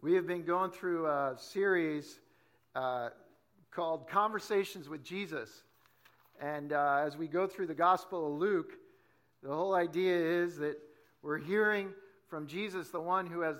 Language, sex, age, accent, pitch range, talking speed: English, male, 50-69, American, 155-200 Hz, 155 wpm